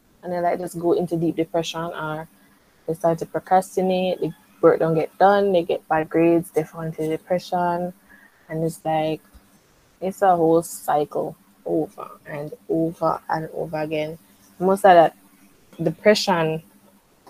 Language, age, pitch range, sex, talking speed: English, 20-39, 165-200 Hz, female, 150 wpm